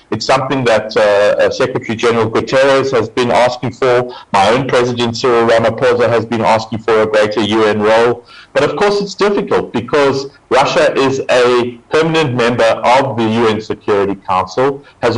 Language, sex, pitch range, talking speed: English, male, 110-135 Hz, 160 wpm